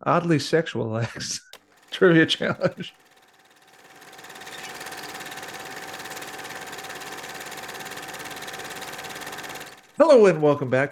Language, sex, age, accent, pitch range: English, male, 40-59, American, 125-180 Hz